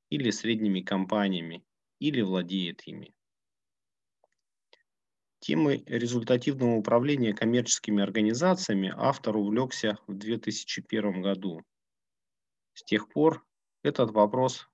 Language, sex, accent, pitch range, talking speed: Russian, male, native, 100-120 Hz, 85 wpm